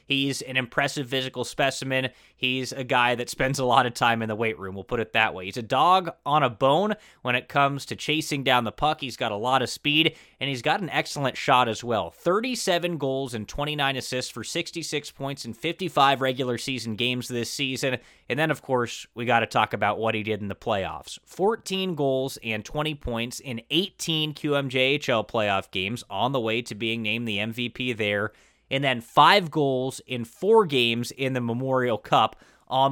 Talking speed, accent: 205 wpm, American